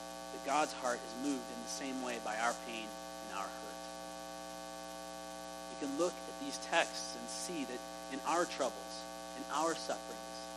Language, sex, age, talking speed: English, male, 30-49, 170 wpm